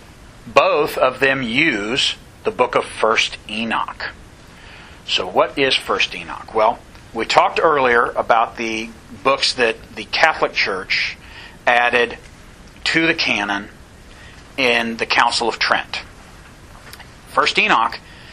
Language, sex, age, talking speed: English, male, 40-59, 120 wpm